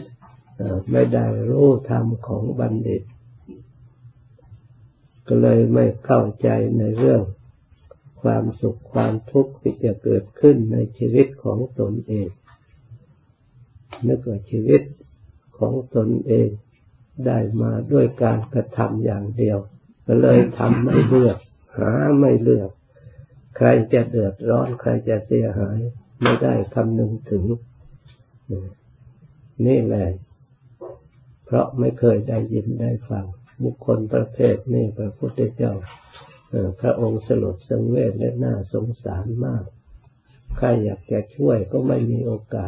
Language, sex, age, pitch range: Thai, male, 60-79, 105-125 Hz